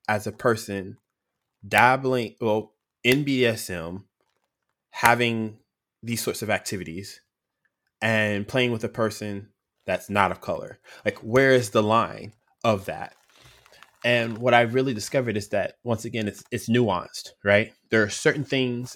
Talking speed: 140 wpm